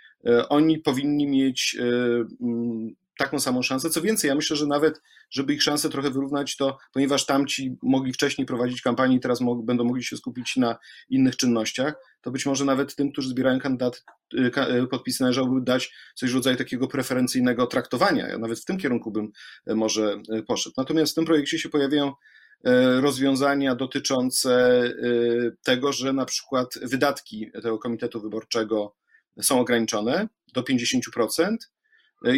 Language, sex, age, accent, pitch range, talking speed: Polish, male, 40-59, native, 120-145 Hz, 145 wpm